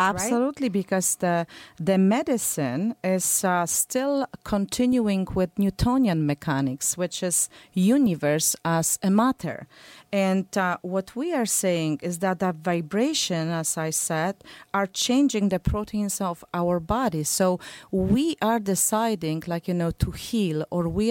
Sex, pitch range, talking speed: female, 180-230 Hz, 140 wpm